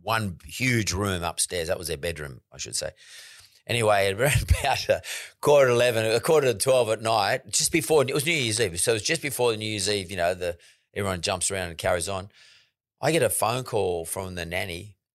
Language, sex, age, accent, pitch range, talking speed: English, male, 40-59, Australian, 90-120 Hz, 220 wpm